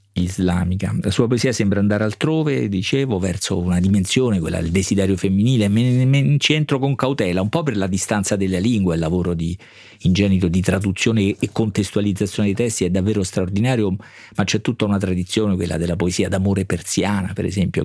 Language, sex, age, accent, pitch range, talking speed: Italian, male, 50-69, native, 95-115 Hz, 170 wpm